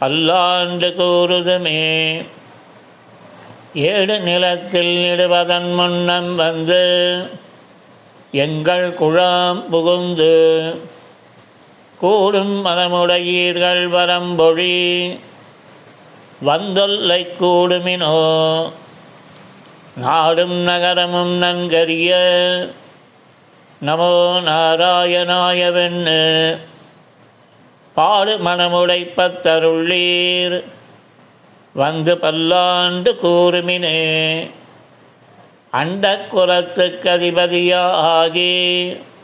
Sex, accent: male, native